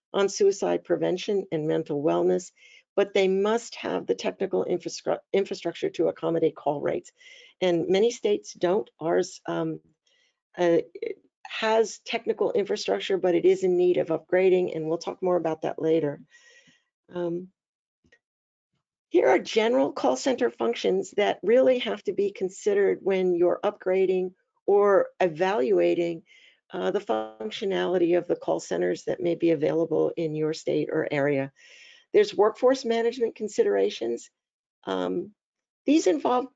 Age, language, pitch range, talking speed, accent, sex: 50-69, English, 170-240 Hz, 135 wpm, American, female